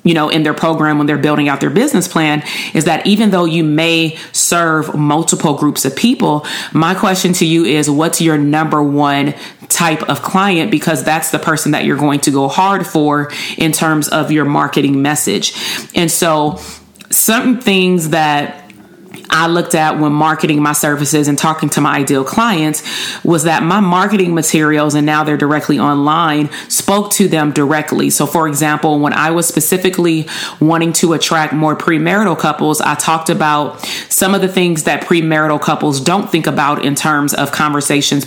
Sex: female